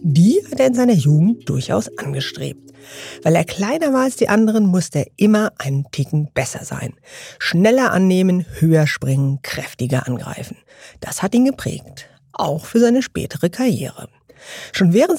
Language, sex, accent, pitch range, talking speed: German, female, German, 145-215 Hz, 155 wpm